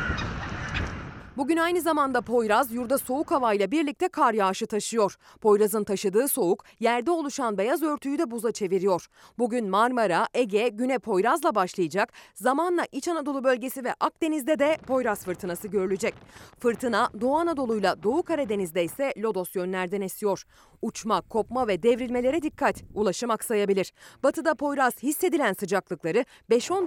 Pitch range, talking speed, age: 200-290 Hz, 130 wpm, 30-49